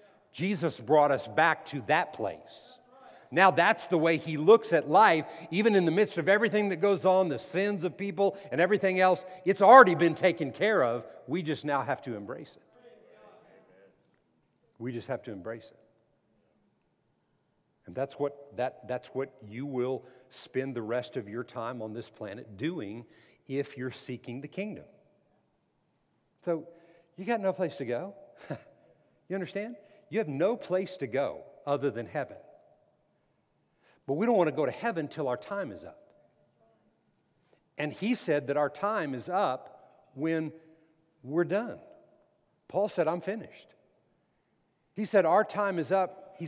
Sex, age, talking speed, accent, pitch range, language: male, 50-69, 165 wpm, American, 135-195 Hz, English